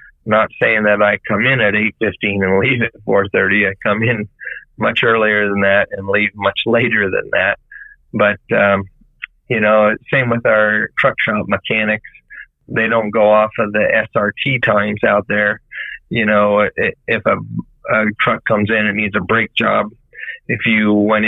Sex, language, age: male, English, 30-49